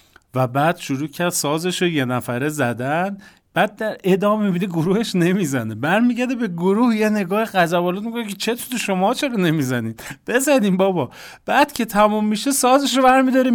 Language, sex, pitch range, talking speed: Persian, male, 135-195 Hz, 160 wpm